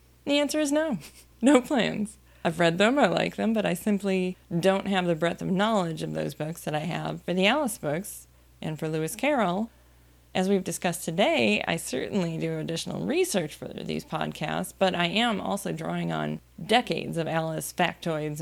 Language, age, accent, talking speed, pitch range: English, 20-39, American, 185 wpm, 160-220 Hz